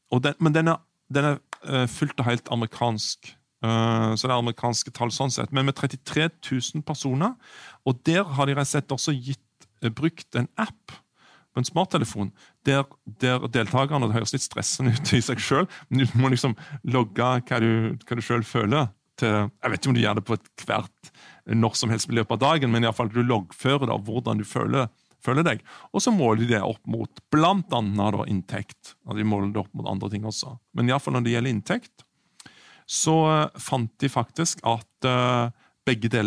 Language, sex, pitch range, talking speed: English, male, 115-145 Hz, 200 wpm